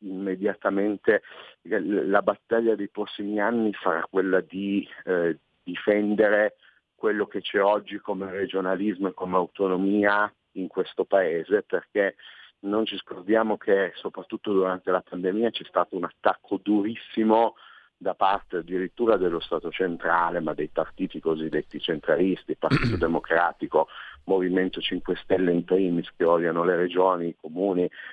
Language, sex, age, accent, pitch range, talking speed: Italian, male, 50-69, native, 90-105 Hz, 130 wpm